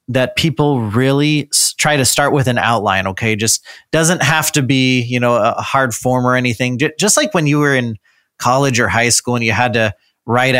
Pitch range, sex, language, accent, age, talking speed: 115-145 Hz, male, English, American, 30-49, 210 wpm